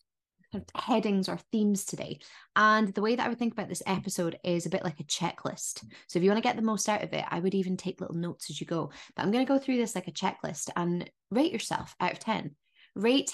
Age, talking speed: 20-39, 245 wpm